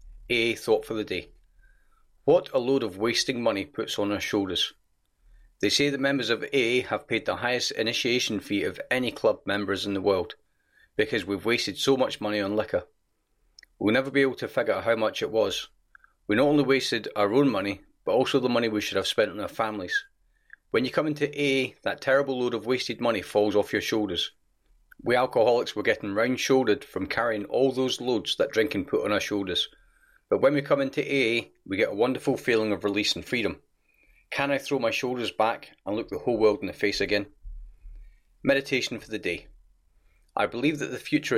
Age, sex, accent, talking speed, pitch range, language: 40-59, male, British, 205 wpm, 105-140 Hz, English